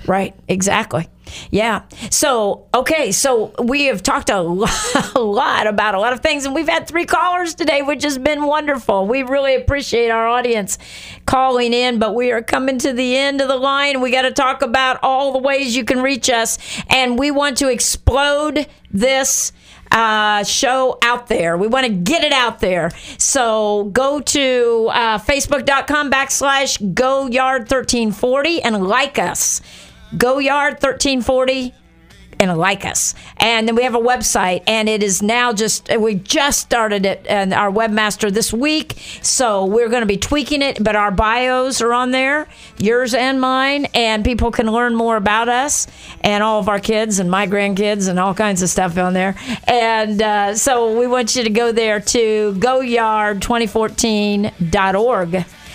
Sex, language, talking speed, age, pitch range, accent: female, English, 170 wpm, 50-69, 215-270 Hz, American